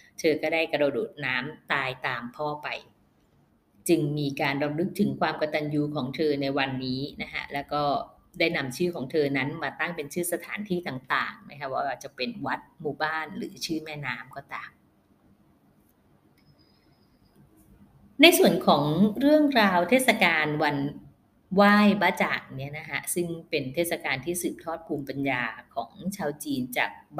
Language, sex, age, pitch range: Thai, female, 20-39, 145-190 Hz